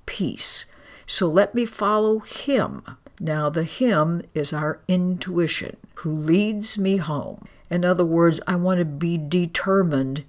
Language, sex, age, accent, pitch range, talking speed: English, female, 60-79, American, 150-180 Hz, 140 wpm